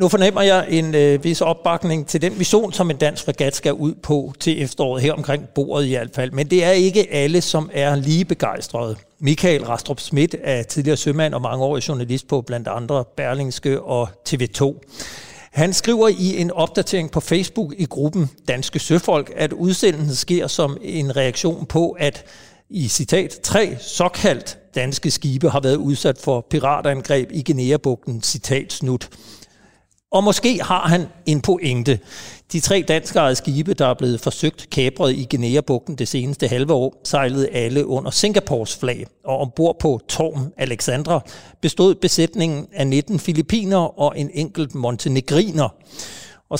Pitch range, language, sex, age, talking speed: 135-165 Hz, Danish, male, 60-79, 160 wpm